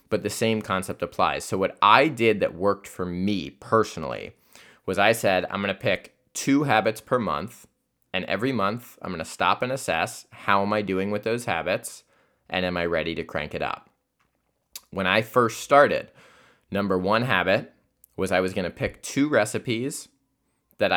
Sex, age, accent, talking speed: male, 20-39, American, 185 wpm